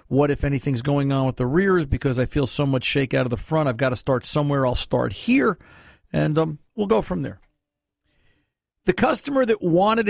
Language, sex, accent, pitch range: English, male, American, 130-185 Hz